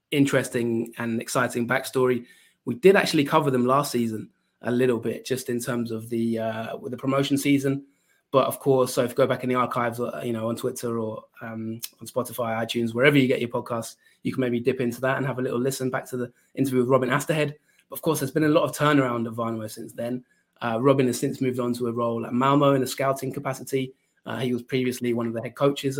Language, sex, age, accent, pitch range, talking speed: English, male, 20-39, British, 120-135 Hz, 240 wpm